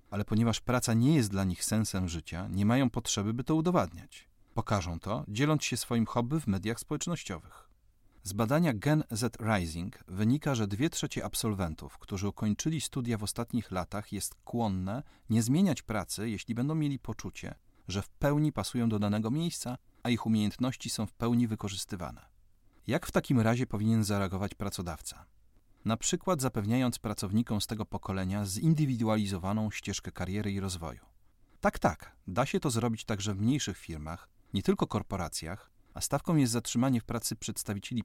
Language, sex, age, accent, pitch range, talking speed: Polish, male, 40-59, native, 100-125 Hz, 160 wpm